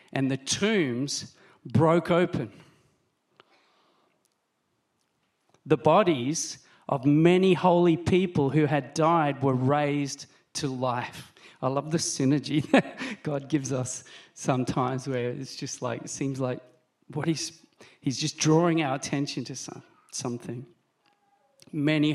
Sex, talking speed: male, 120 wpm